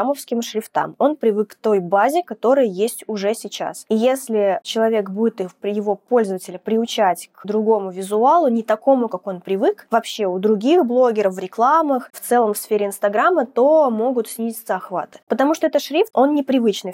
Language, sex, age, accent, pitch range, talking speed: Russian, female, 20-39, native, 190-235 Hz, 165 wpm